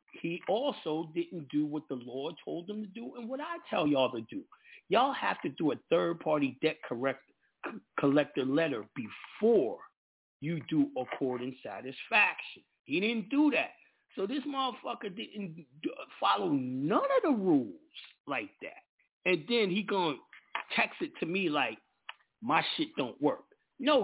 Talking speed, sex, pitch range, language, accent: 155 wpm, male, 150-235 Hz, English, American